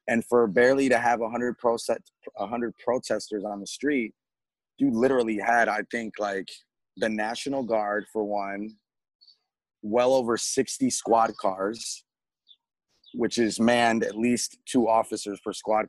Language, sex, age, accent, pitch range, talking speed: English, male, 30-49, American, 105-120 Hz, 140 wpm